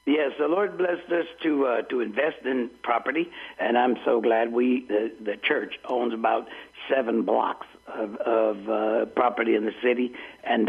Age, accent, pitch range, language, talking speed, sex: 60-79, American, 115-135 Hz, English, 180 wpm, male